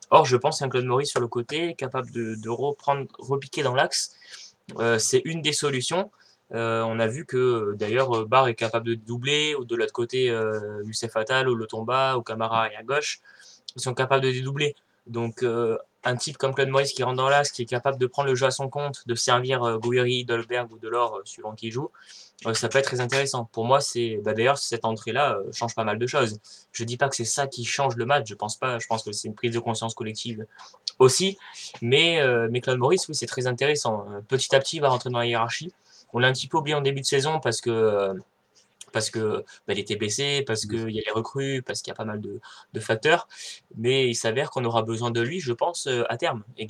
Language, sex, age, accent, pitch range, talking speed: French, male, 20-39, French, 115-135 Hz, 240 wpm